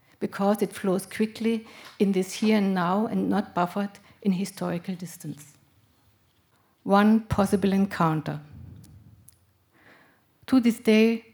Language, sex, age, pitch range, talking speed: English, female, 60-79, 180-205 Hz, 110 wpm